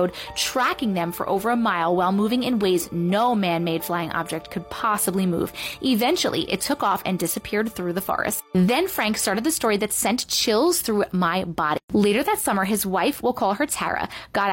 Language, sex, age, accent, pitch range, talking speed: English, female, 20-39, American, 190-255 Hz, 195 wpm